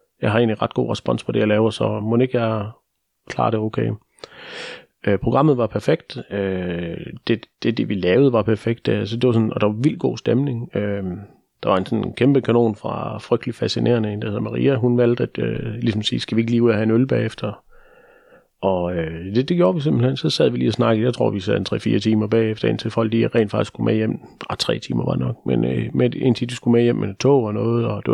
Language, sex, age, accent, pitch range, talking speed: Danish, male, 30-49, native, 110-125 Hz, 245 wpm